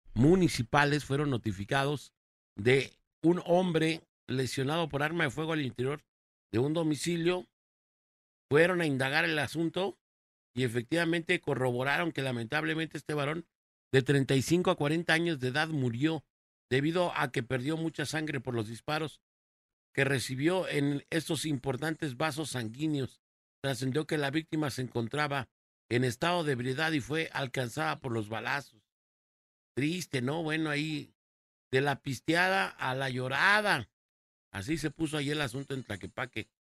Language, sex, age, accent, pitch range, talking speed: Spanish, male, 50-69, Mexican, 130-170 Hz, 140 wpm